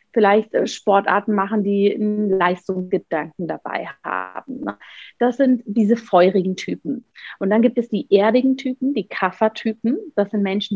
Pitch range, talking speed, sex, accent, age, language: 185-225 Hz, 145 wpm, female, German, 30-49, German